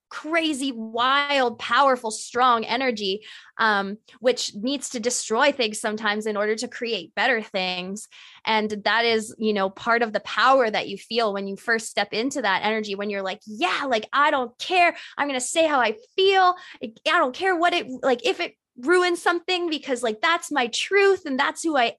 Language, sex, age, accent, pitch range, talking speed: English, female, 20-39, American, 215-280 Hz, 195 wpm